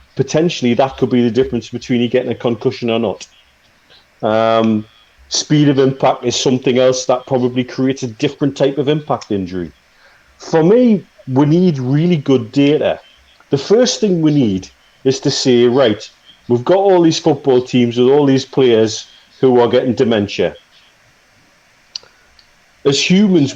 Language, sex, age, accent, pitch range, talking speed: English, male, 40-59, British, 120-145 Hz, 155 wpm